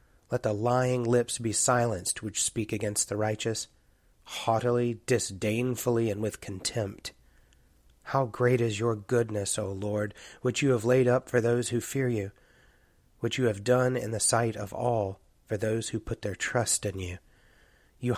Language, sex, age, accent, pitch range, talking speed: English, male, 30-49, American, 100-125 Hz, 170 wpm